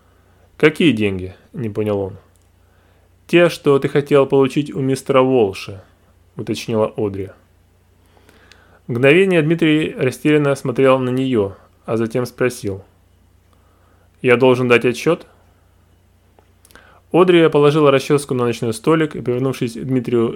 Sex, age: male, 20-39